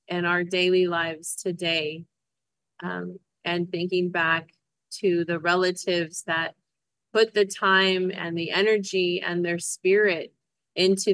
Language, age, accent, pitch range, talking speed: English, 30-49, American, 170-195 Hz, 125 wpm